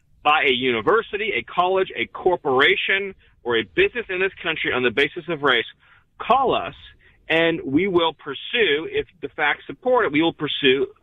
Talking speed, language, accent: 175 wpm, English, American